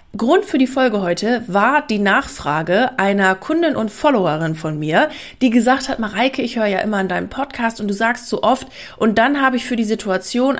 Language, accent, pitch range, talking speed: German, German, 190-245 Hz, 210 wpm